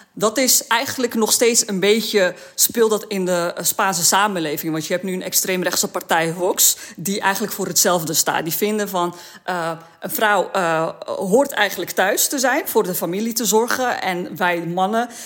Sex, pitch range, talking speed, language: female, 175-210 Hz, 180 wpm, Dutch